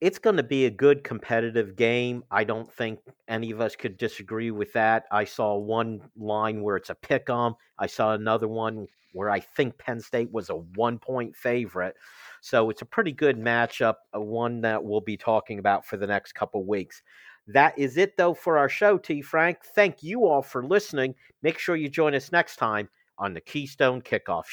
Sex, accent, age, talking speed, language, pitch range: male, American, 50-69, 200 wpm, English, 120-180 Hz